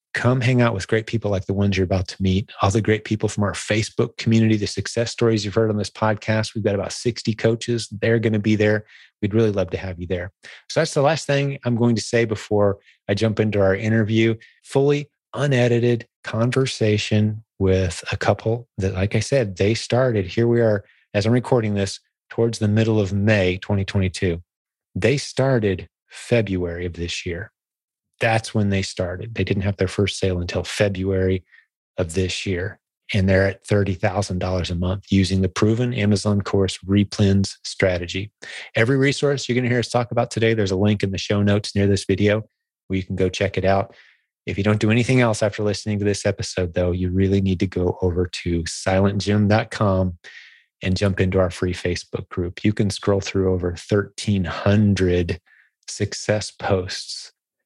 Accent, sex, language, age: American, male, English, 30-49